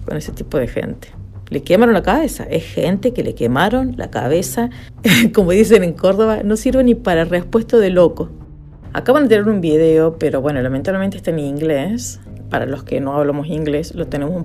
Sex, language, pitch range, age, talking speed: female, Spanish, 155-235 Hz, 50-69, 195 wpm